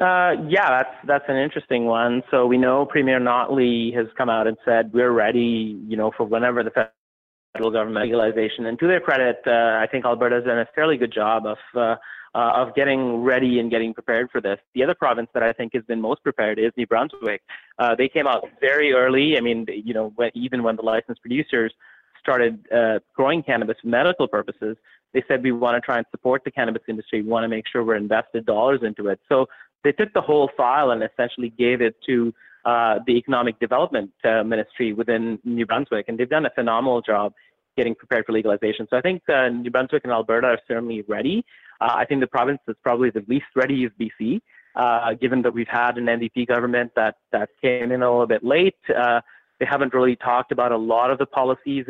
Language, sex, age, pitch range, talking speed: English, male, 30-49, 115-130 Hz, 215 wpm